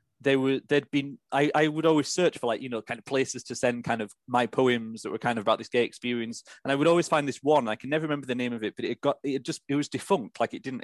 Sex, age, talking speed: male, 30-49, 315 wpm